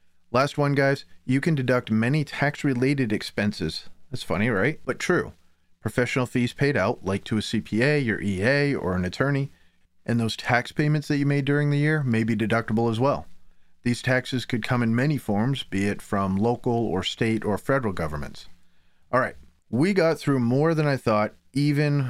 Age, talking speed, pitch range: 30-49, 185 wpm, 100-135 Hz